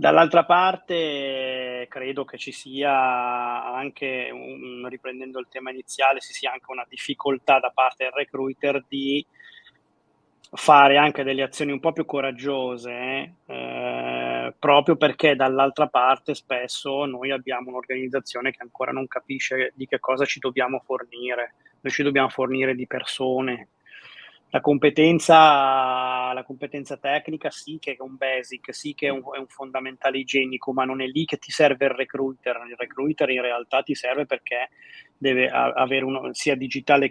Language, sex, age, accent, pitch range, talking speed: Italian, male, 20-39, native, 130-140 Hz, 145 wpm